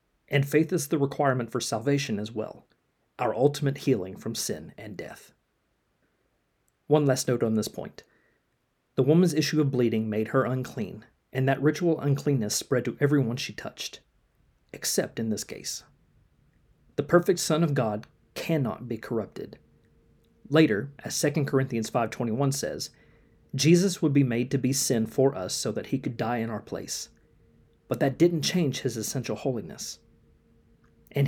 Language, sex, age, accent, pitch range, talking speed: English, male, 40-59, American, 115-145 Hz, 155 wpm